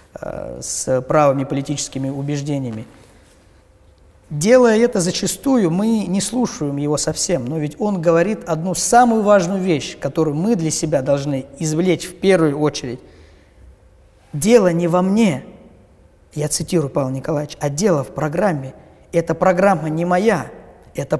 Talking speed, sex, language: 130 wpm, male, Russian